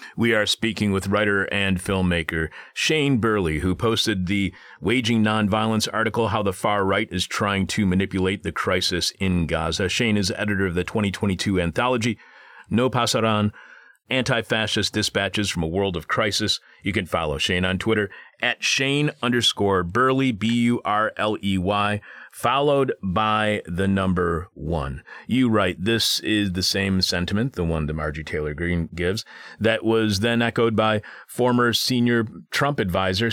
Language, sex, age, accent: English, male, 40-59, American